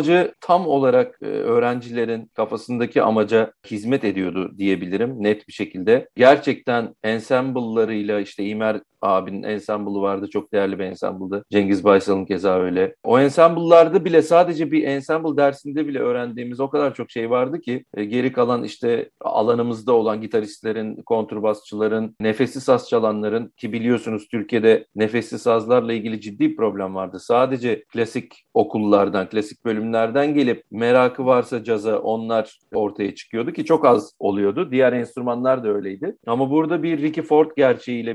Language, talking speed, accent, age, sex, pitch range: Turkish, 140 wpm, native, 40-59, male, 110-145 Hz